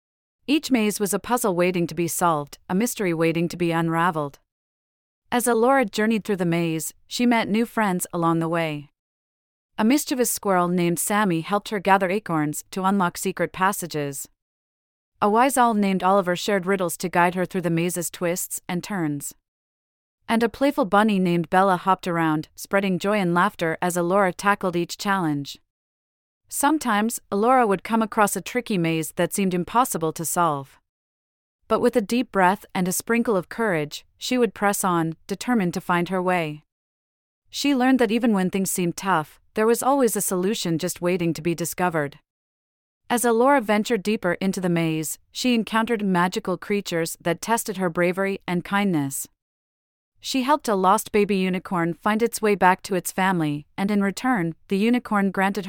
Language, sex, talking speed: English, female, 170 wpm